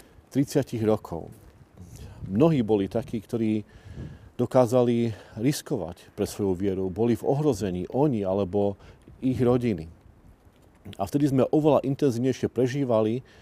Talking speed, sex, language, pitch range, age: 105 wpm, male, Slovak, 105-130 Hz, 40-59